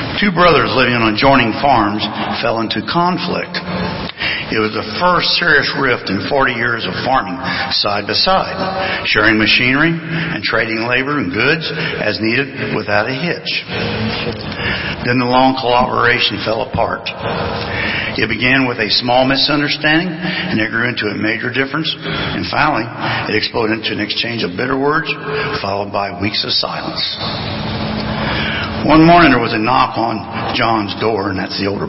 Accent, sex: American, male